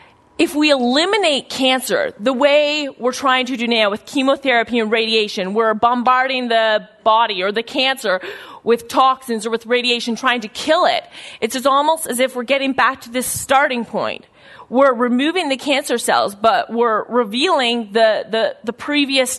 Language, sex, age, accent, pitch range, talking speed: English, female, 30-49, American, 225-275 Hz, 165 wpm